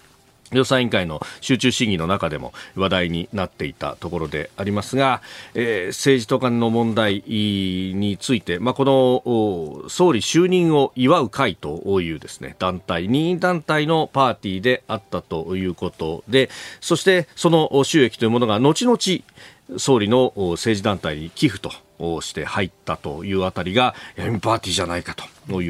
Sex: male